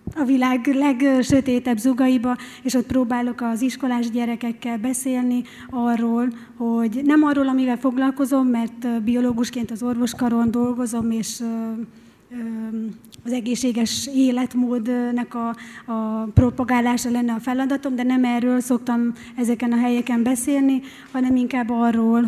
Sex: female